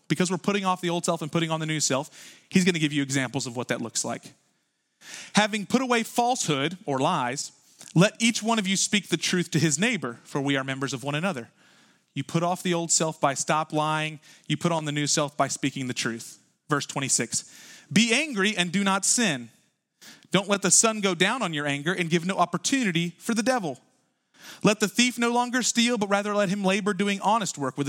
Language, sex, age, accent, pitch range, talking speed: English, male, 30-49, American, 150-205 Hz, 230 wpm